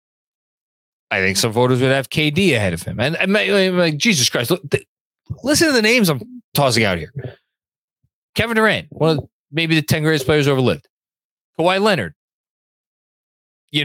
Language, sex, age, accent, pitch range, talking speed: English, male, 20-39, American, 115-155 Hz, 170 wpm